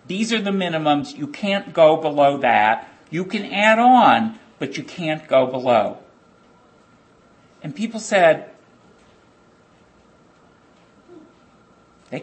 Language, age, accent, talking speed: English, 50-69, American, 110 wpm